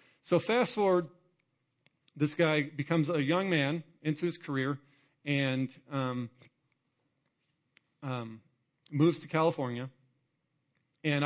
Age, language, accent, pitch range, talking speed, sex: 40-59, English, American, 125-150 Hz, 100 wpm, male